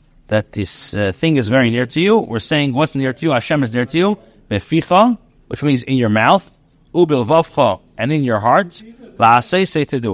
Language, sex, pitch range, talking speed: English, male, 130-175 Hz, 215 wpm